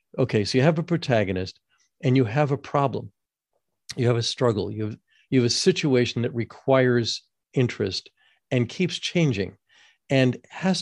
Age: 50-69